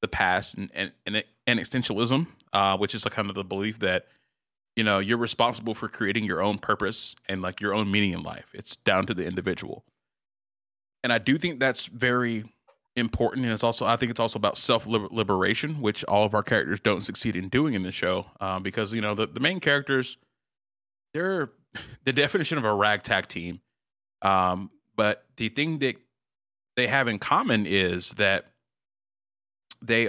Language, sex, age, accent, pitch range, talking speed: English, male, 30-49, American, 100-125 Hz, 185 wpm